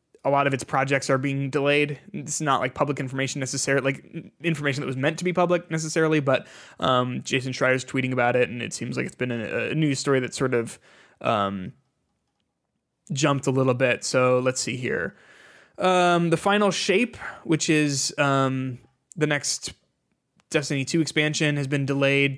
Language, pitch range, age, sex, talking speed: English, 130-150 Hz, 20-39, male, 180 wpm